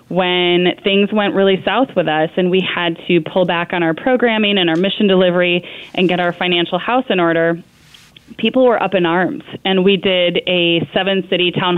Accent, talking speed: American, 195 wpm